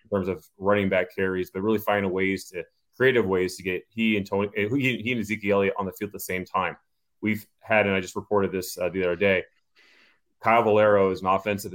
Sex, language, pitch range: male, English, 95-110 Hz